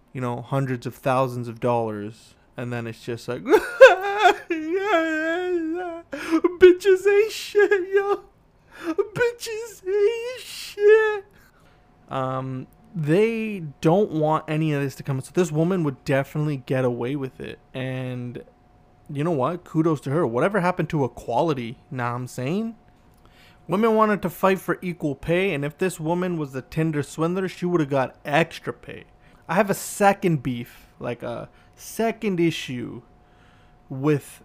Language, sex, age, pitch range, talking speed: English, male, 20-39, 130-200 Hz, 145 wpm